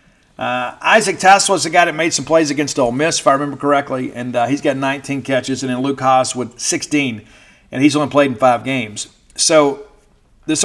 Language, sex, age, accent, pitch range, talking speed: English, male, 50-69, American, 125-155 Hz, 215 wpm